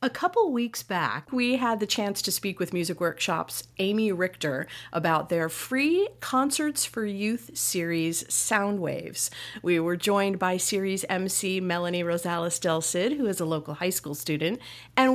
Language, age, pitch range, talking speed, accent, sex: English, 40-59, 160-210 Hz, 160 wpm, American, female